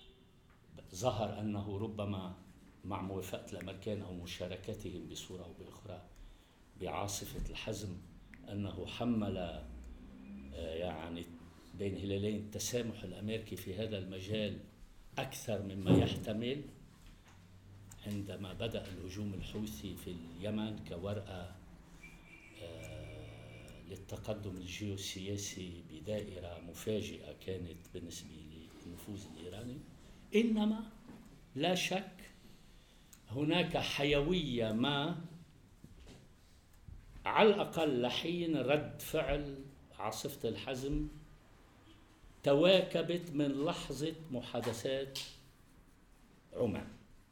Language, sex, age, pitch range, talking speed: English, male, 50-69, 90-125 Hz, 75 wpm